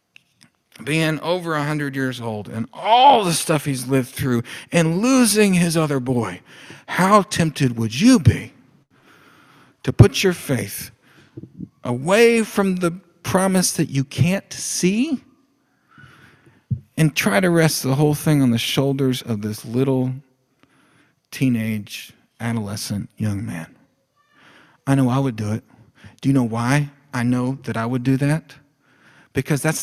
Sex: male